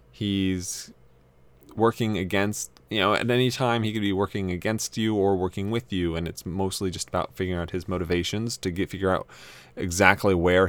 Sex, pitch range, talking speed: male, 90-115 Hz, 185 wpm